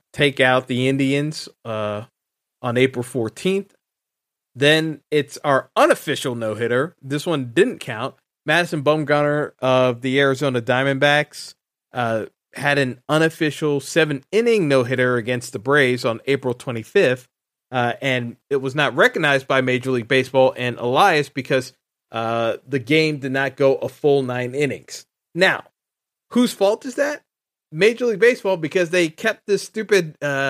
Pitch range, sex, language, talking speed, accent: 130-165 Hz, male, English, 140 wpm, American